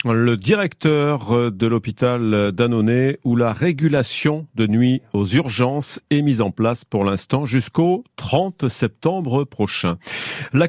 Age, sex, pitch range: 40-59, male, 110-150 Hz